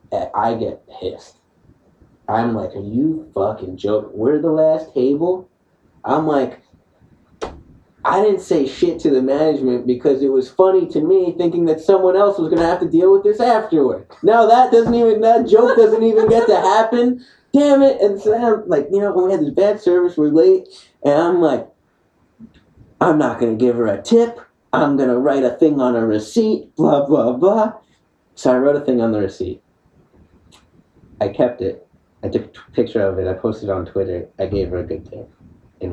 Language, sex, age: English, male, 30-49